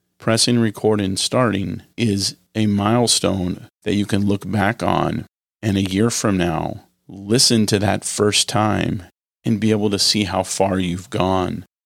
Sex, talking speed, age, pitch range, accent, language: male, 160 wpm, 40-59, 95-110 Hz, American, English